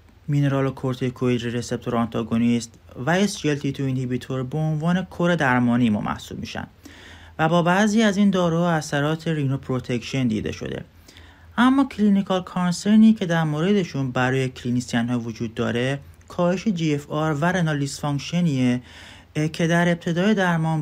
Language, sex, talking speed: Persian, male, 130 wpm